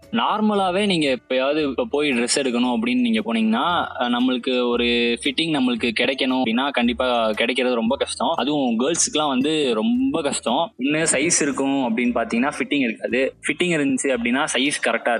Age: 20-39